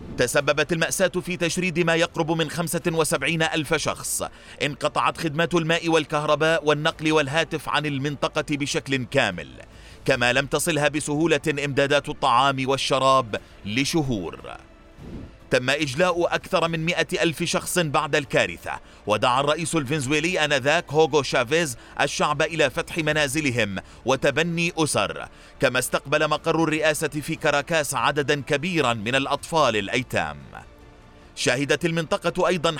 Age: 30-49